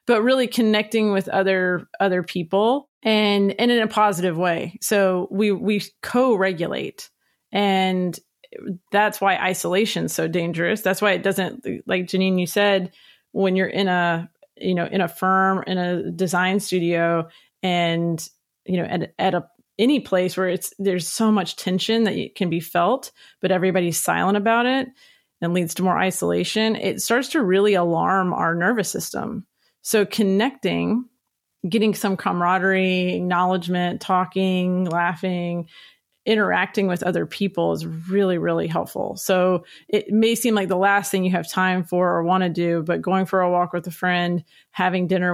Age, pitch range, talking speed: 30-49, 175-200 Hz, 165 wpm